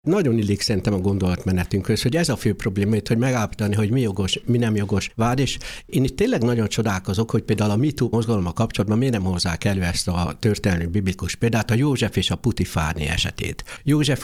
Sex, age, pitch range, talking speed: male, 60-79, 95-125 Hz, 200 wpm